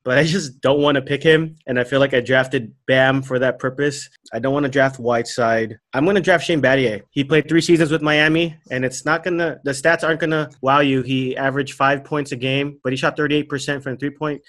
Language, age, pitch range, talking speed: English, 20-39, 125-150 Hz, 260 wpm